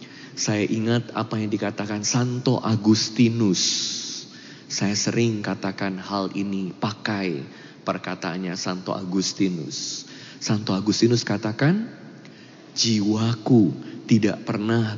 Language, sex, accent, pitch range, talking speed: Indonesian, male, native, 100-140 Hz, 90 wpm